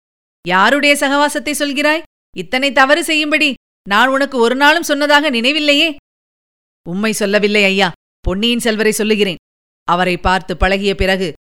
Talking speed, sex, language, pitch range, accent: 115 wpm, female, Tamil, 205-270 Hz, native